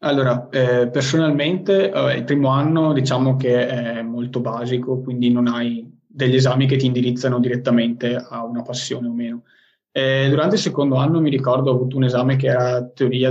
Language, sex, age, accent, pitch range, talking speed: Italian, male, 20-39, native, 125-135 Hz, 180 wpm